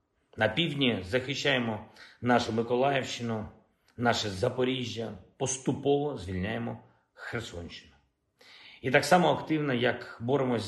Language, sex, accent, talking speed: Ukrainian, male, native, 90 wpm